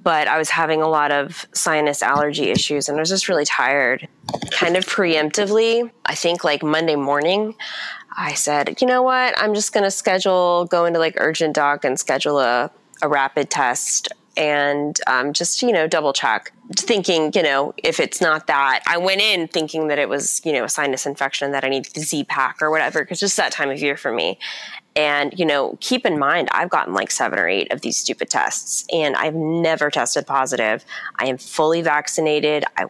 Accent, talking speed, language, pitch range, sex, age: American, 200 wpm, English, 145-180 Hz, female, 20-39